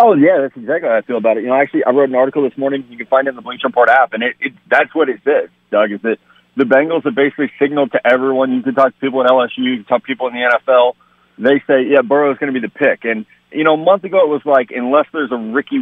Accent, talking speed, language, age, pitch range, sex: American, 310 wpm, English, 30-49, 125-145 Hz, male